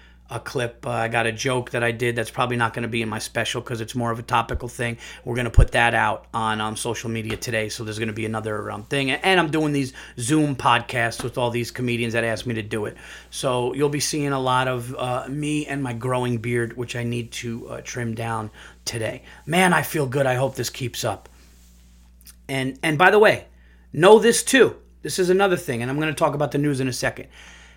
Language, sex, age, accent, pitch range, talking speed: English, male, 30-49, American, 115-150 Hz, 245 wpm